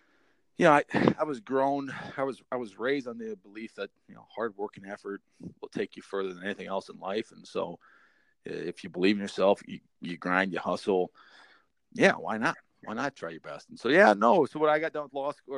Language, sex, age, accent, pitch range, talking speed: English, male, 40-59, American, 105-130 Hz, 240 wpm